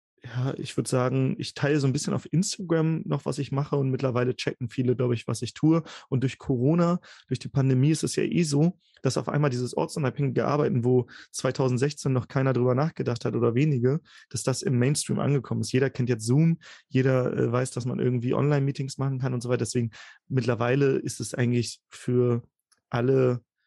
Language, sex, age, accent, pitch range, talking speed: German, male, 30-49, German, 125-140 Hz, 200 wpm